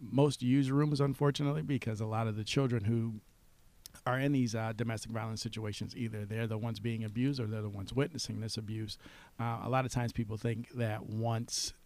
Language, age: English, 50-69